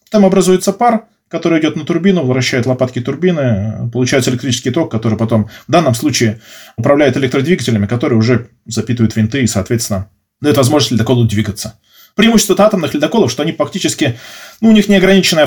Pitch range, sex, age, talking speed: 120-175 Hz, male, 20-39, 155 wpm